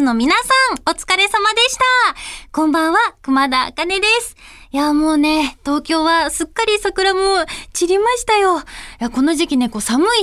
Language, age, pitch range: Japanese, 20-39, 225-350 Hz